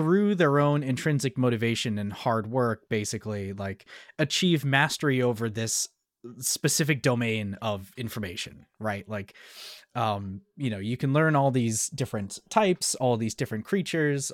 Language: English